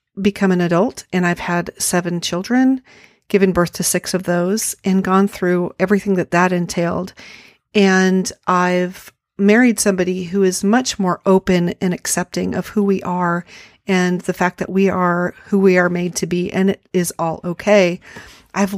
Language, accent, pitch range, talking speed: English, American, 180-205 Hz, 175 wpm